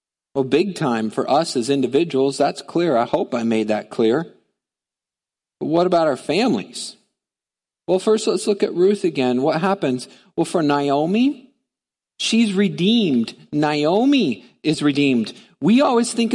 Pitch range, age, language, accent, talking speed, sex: 155-220 Hz, 40-59, English, American, 145 wpm, male